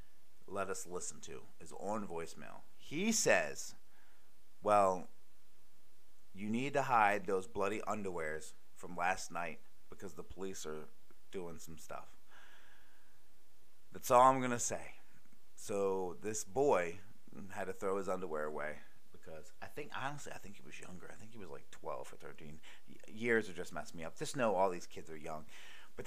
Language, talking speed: English, 165 wpm